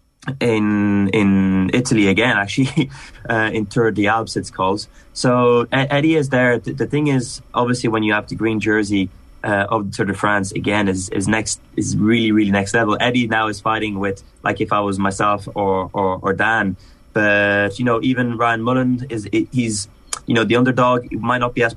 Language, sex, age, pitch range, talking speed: English, male, 20-39, 100-120 Hz, 205 wpm